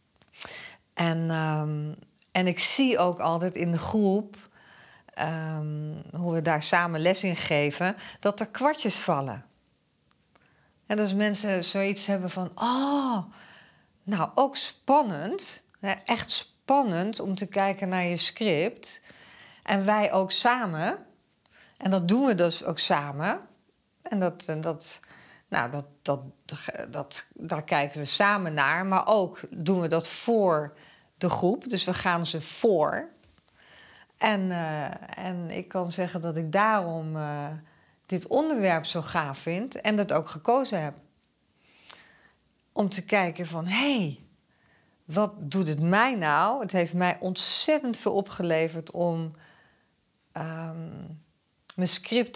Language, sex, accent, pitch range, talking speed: Dutch, female, Dutch, 160-205 Hz, 135 wpm